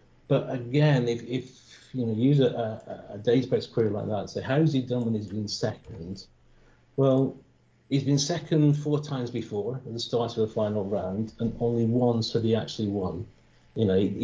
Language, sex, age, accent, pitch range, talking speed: English, male, 50-69, British, 110-130 Hz, 200 wpm